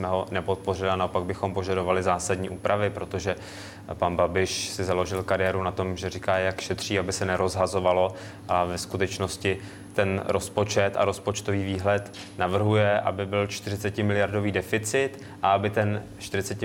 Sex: male